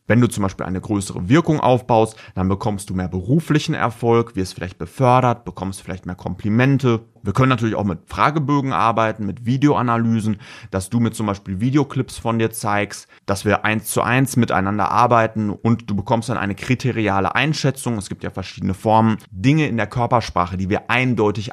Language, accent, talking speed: German, German, 180 wpm